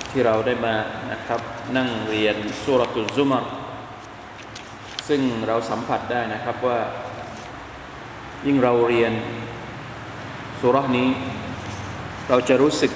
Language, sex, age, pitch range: Thai, male, 20-39, 120-145 Hz